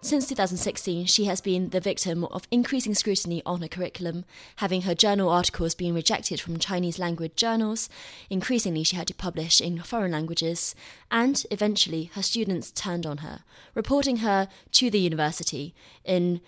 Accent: British